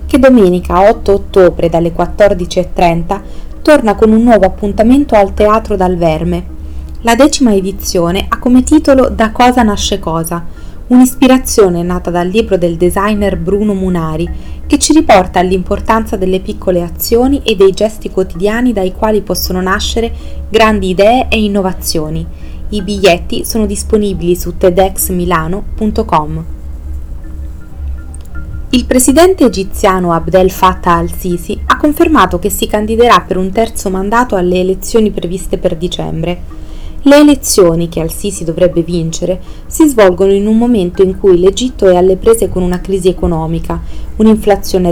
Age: 20-39